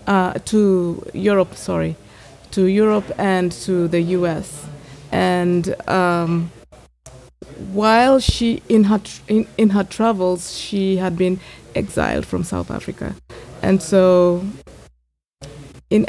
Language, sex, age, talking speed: English, female, 20-39, 115 wpm